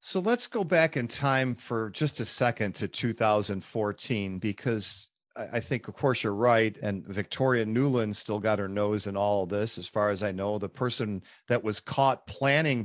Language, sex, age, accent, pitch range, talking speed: English, male, 40-59, American, 110-145 Hz, 185 wpm